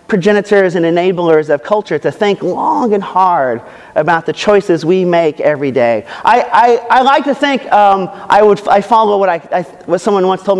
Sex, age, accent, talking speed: male, 40-59, American, 200 wpm